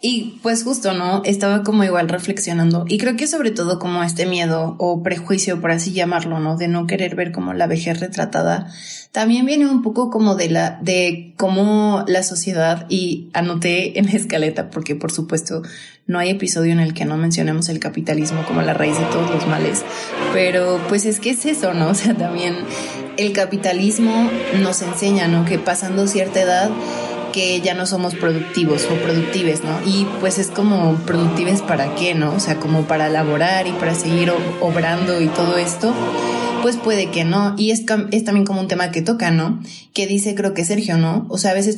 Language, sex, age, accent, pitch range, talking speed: Spanish, female, 20-39, Mexican, 170-200 Hz, 195 wpm